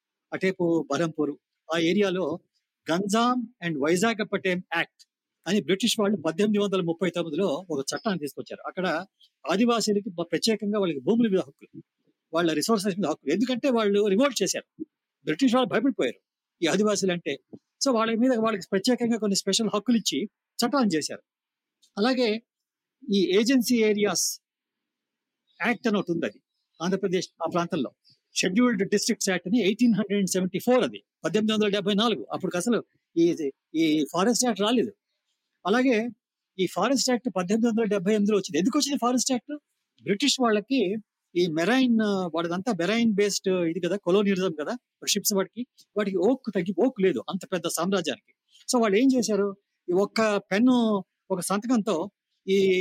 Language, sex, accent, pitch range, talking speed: Telugu, male, native, 185-240 Hz, 145 wpm